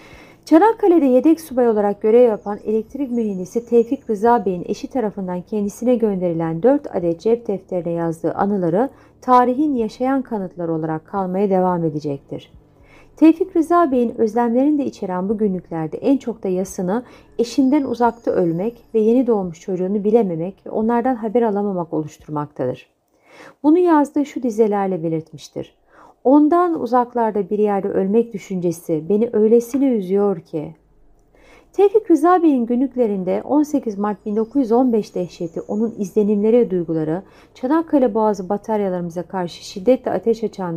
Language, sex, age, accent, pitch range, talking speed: Turkish, female, 40-59, native, 180-245 Hz, 130 wpm